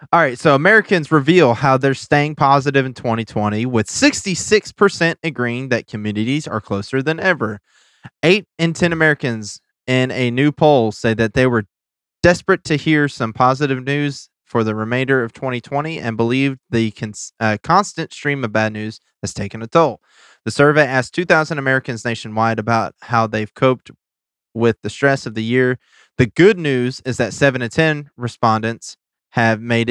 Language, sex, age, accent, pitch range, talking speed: English, male, 20-39, American, 110-140 Hz, 170 wpm